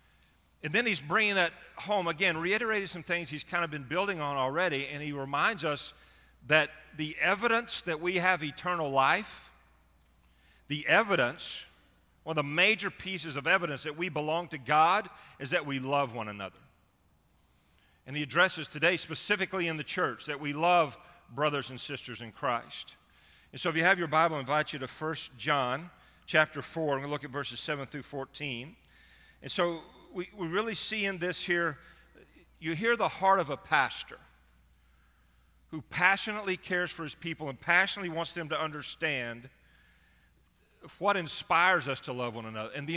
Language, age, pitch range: English, 40-59, 130-175 Hz